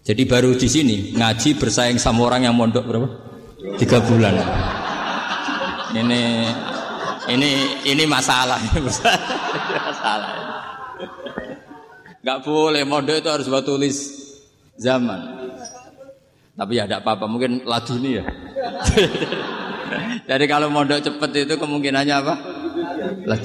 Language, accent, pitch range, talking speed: Indonesian, native, 110-140 Hz, 100 wpm